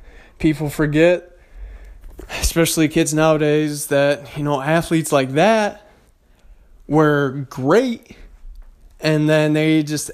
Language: English